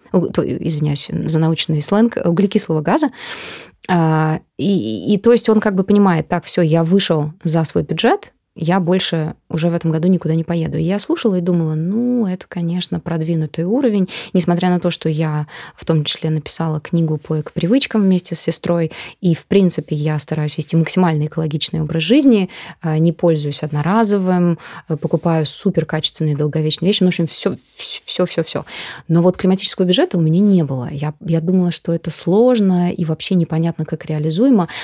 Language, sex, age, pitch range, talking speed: Russian, female, 20-39, 160-195 Hz, 160 wpm